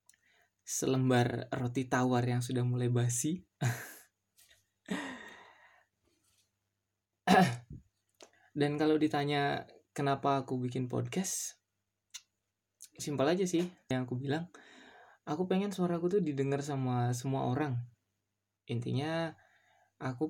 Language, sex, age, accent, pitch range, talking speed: Indonesian, male, 20-39, native, 120-145 Hz, 90 wpm